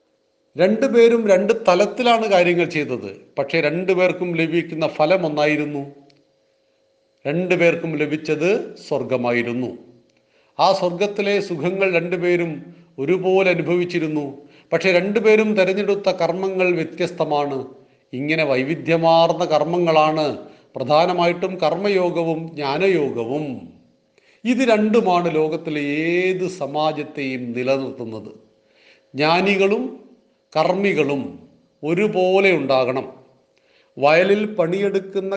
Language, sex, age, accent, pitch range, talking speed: Malayalam, male, 40-59, native, 155-190 Hz, 70 wpm